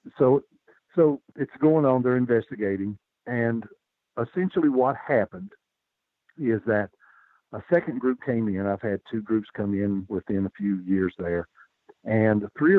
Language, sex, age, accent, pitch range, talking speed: English, male, 50-69, American, 95-115 Hz, 145 wpm